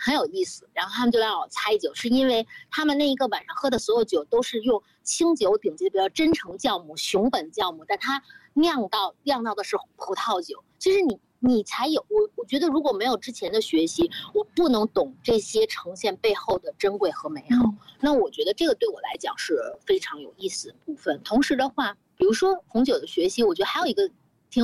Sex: female